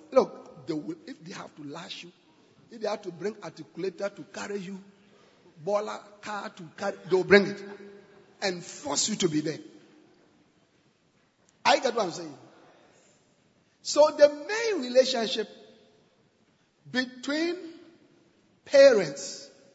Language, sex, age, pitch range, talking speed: English, male, 50-69, 205-335 Hz, 130 wpm